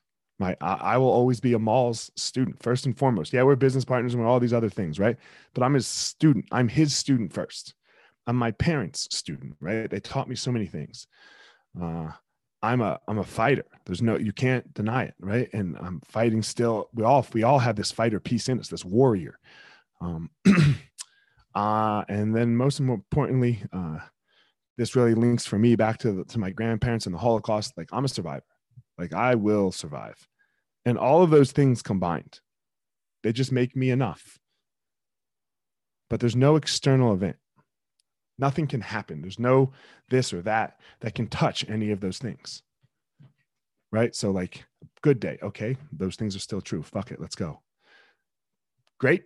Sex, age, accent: male, 20-39, American